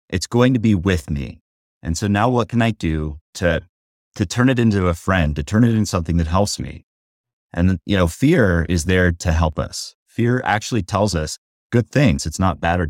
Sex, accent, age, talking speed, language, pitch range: male, American, 30-49, 220 wpm, English, 80-105 Hz